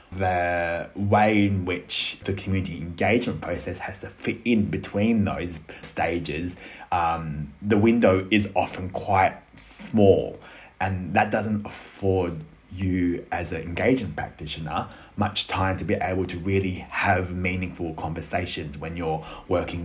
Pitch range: 90-105 Hz